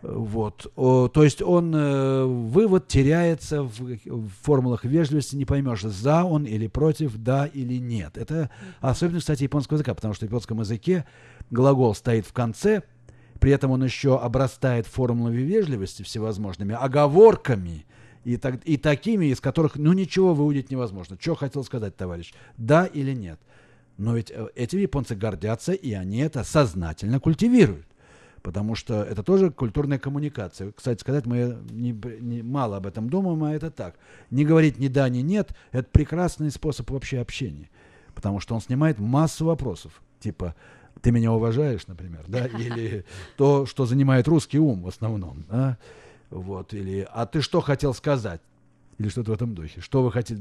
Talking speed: 160 wpm